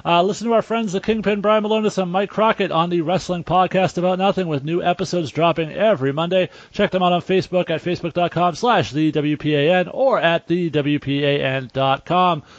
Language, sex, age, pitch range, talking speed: English, male, 30-49, 165-205 Hz, 180 wpm